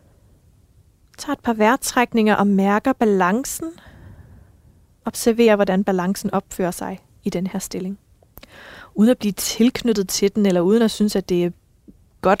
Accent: native